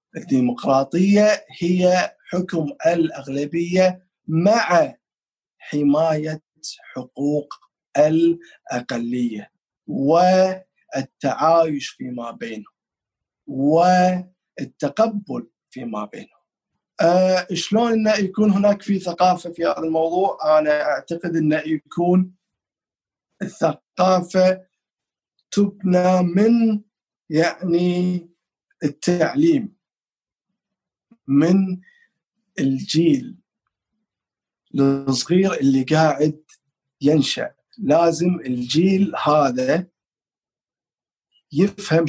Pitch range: 145-190 Hz